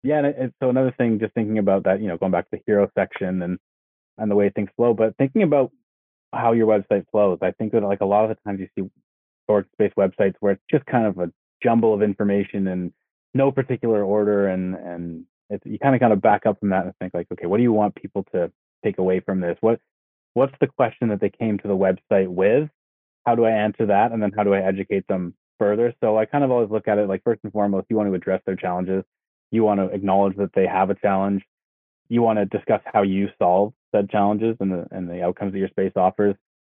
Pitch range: 95-105 Hz